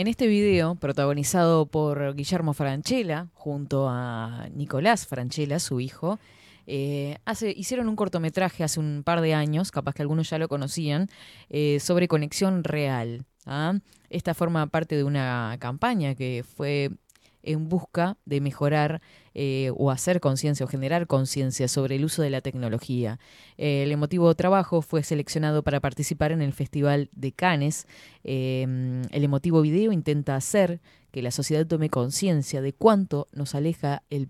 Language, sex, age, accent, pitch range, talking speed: Spanish, female, 20-39, Argentinian, 130-160 Hz, 150 wpm